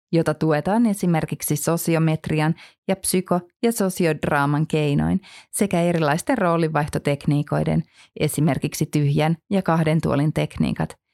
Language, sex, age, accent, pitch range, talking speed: Finnish, female, 30-49, native, 150-180 Hz, 95 wpm